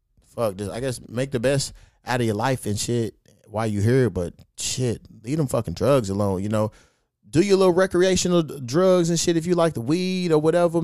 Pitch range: 115-170 Hz